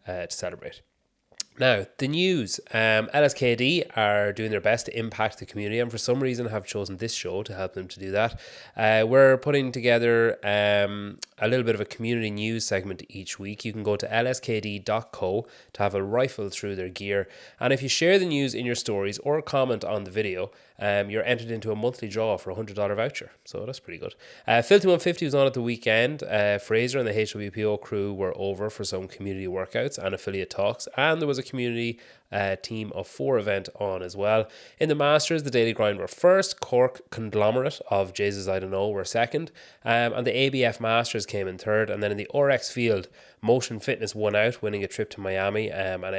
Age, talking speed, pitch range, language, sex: 20-39, 215 wpm, 100-120 Hz, English, male